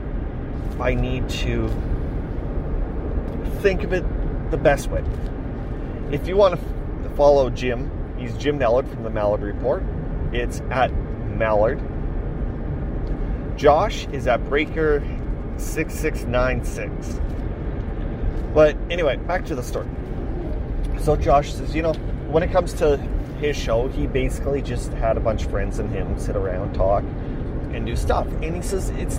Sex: male